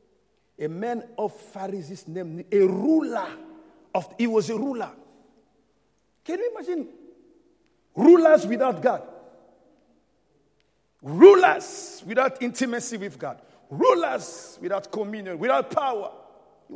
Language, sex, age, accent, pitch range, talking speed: English, male, 50-69, Nigerian, 190-260 Hz, 105 wpm